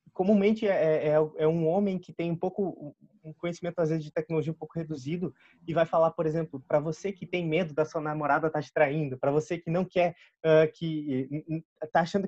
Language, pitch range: Portuguese, 155-195 Hz